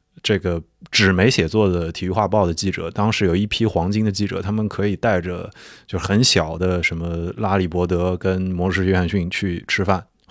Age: 20-39